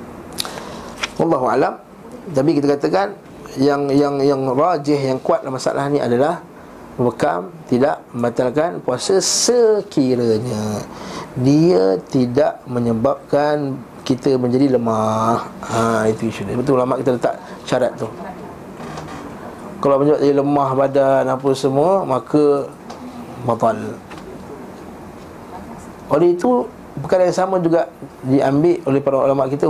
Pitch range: 130-170 Hz